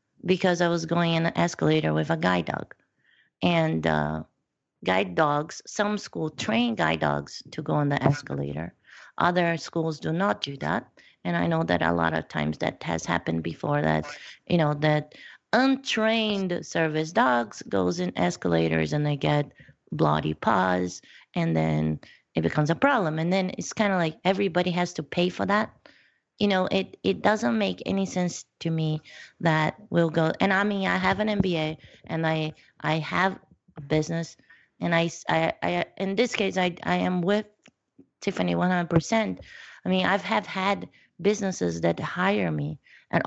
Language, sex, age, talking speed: English, female, 30-49, 175 wpm